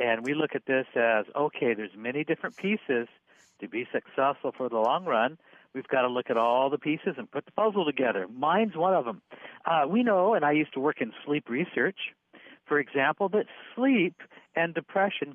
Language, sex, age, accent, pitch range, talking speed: English, male, 60-79, American, 135-185 Hz, 205 wpm